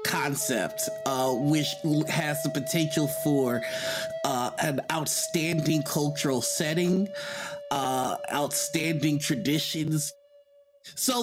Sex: male